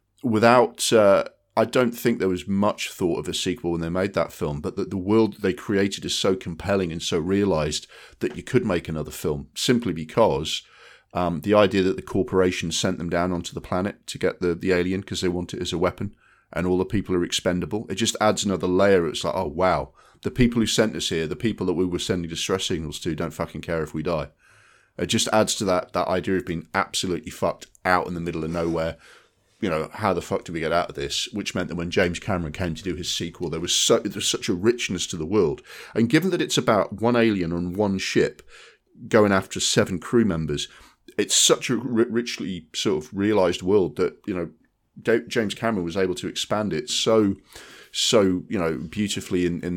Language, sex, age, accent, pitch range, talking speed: English, male, 40-59, British, 85-100 Hz, 230 wpm